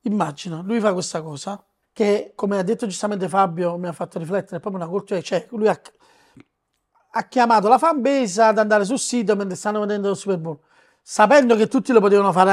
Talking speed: 210 wpm